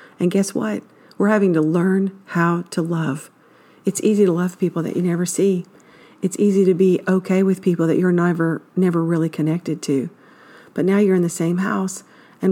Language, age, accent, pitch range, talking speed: English, 50-69, American, 165-190 Hz, 195 wpm